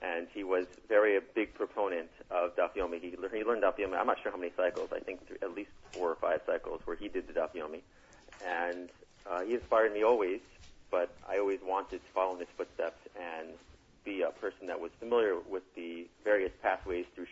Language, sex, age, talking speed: English, male, 30-49, 205 wpm